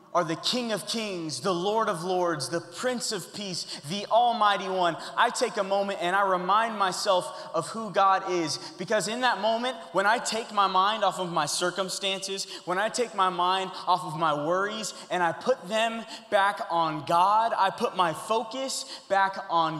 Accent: American